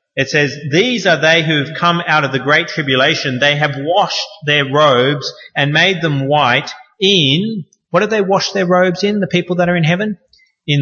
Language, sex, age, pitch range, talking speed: English, male, 30-49, 130-180 Hz, 205 wpm